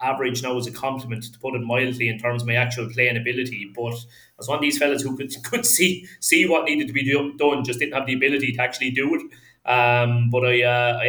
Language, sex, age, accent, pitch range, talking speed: English, male, 20-39, British, 115-125 Hz, 265 wpm